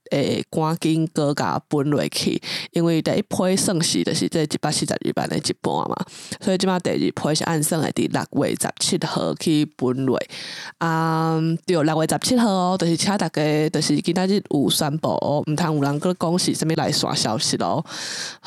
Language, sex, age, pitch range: English, female, 20-39, 140-170 Hz